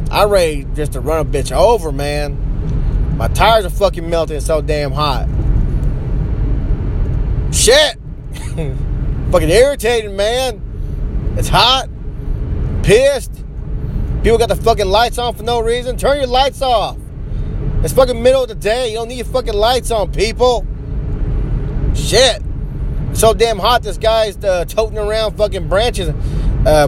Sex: male